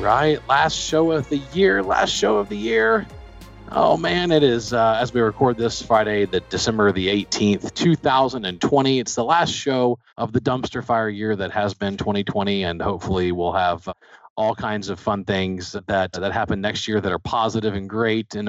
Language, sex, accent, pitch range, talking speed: English, male, American, 100-130 Hz, 190 wpm